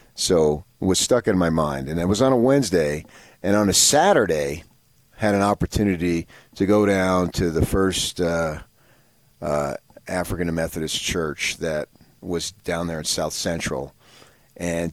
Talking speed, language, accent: 160 wpm, English, American